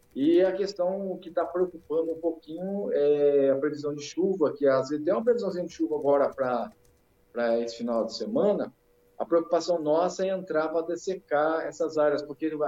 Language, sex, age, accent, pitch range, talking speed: Portuguese, male, 50-69, Brazilian, 145-170 Hz, 180 wpm